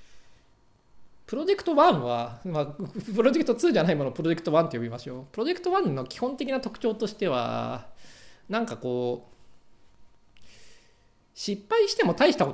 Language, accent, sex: Japanese, native, male